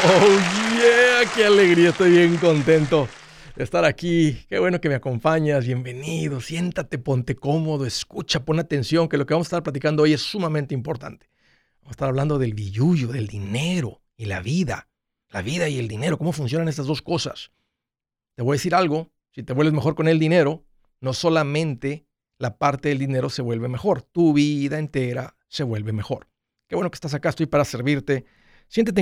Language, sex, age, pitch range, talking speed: Spanish, male, 50-69, 125-165 Hz, 185 wpm